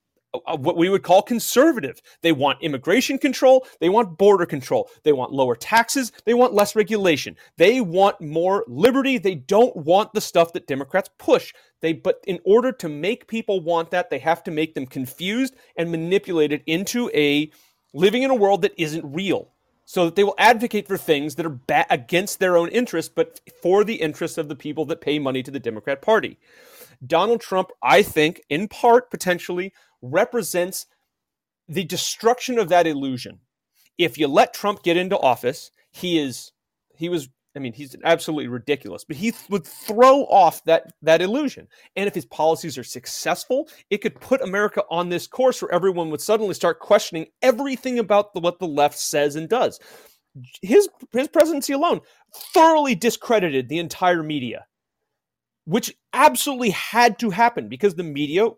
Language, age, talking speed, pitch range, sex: English, 30-49, 175 wpm, 160-230 Hz, male